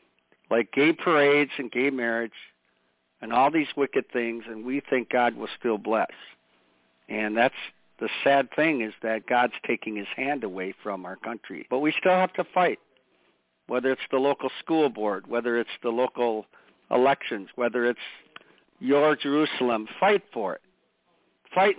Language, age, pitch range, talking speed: English, 60-79, 120-155 Hz, 160 wpm